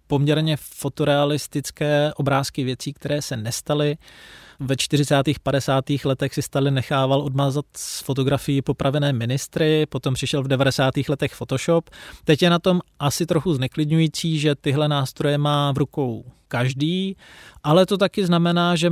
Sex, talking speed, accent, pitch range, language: male, 145 wpm, native, 140-165 Hz, Czech